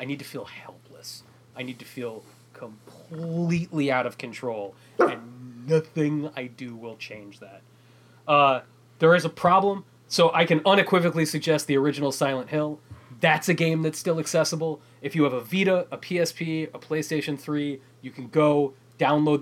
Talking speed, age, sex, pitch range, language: 165 wpm, 20-39, male, 125-155 Hz, English